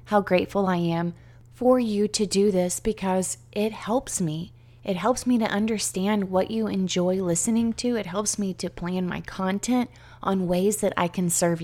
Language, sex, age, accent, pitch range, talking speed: English, female, 30-49, American, 170-215 Hz, 185 wpm